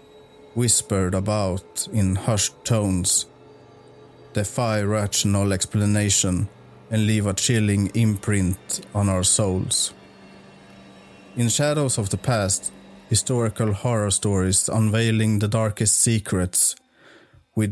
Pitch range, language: 100-115 Hz, English